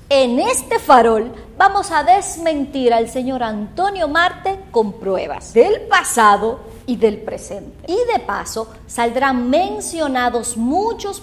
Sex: female